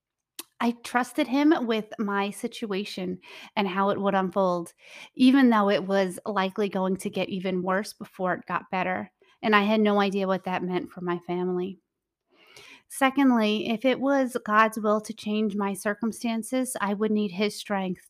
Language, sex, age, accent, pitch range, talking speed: English, female, 30-49, American, 185-220 Hz, 170 wpm